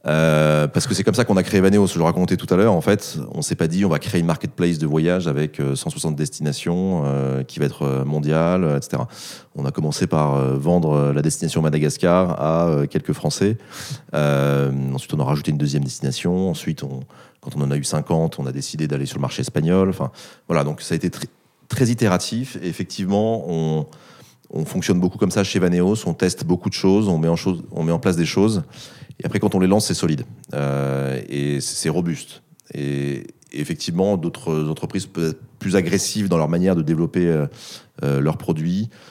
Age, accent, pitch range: 30-49, French, 75-95 Hz